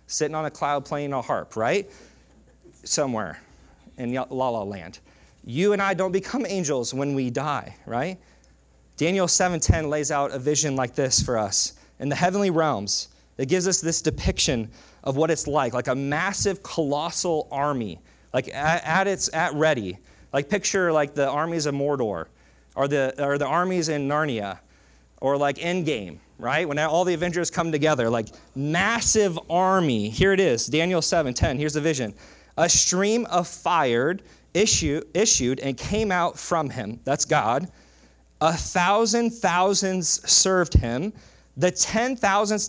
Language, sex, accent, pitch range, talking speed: English, male, American, 110-175 Hz, 160 wpm